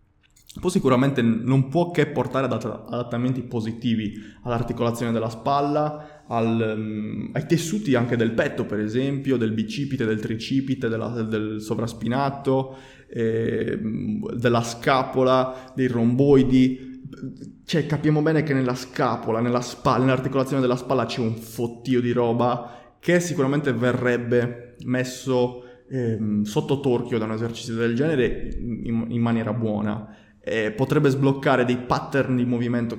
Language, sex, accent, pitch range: Italian, male, native, 115-135 Hz